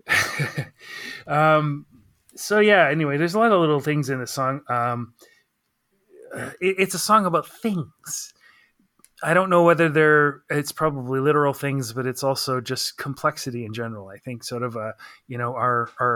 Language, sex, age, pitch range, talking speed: English, male, 30-49, 125-145 Hz, 170 wpm